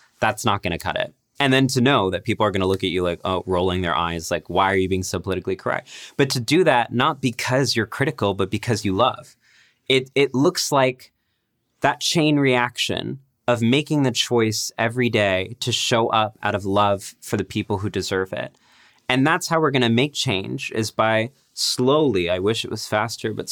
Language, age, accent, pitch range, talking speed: English, 20-39, American, 100-125 Hz, 210 wpm